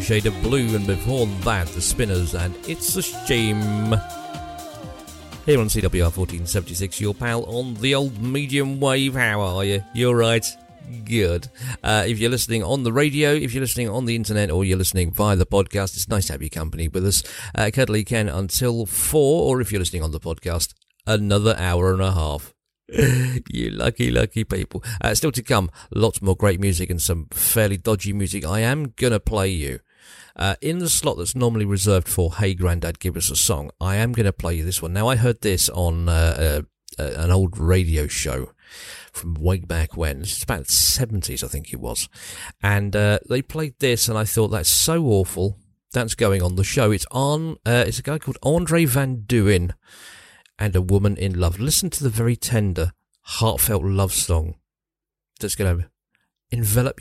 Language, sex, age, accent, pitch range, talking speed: English, male, 40-59, British, 90-120 Hz, 195 wpm